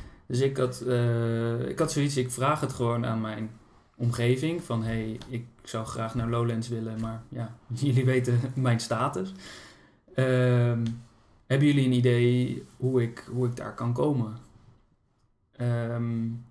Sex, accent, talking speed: male, Dutch, 155 wpm